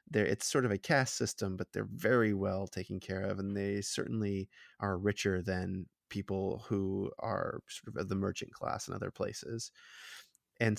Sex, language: male, English